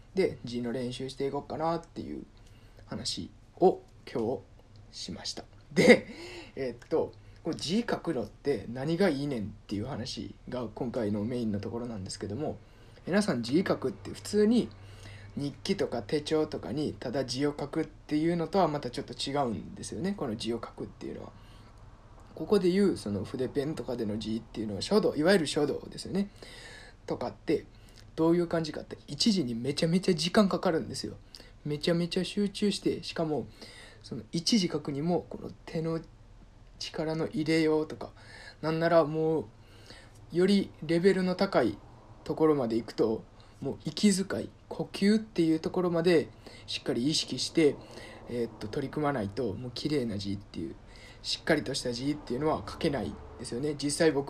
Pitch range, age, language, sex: 110-165 Hz, 20-39, Japanese, male